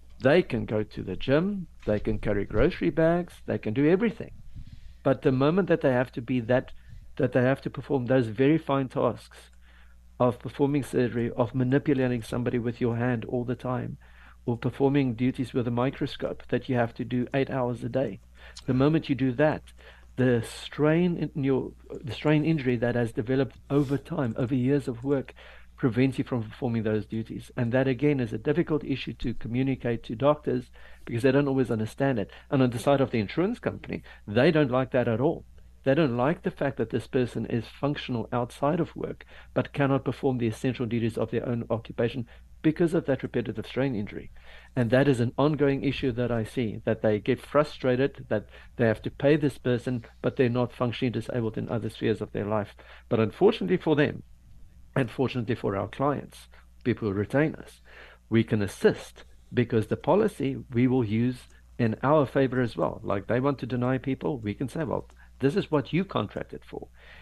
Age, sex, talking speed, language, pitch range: 60-79, male, 195 wpm, English, 115-140 Hz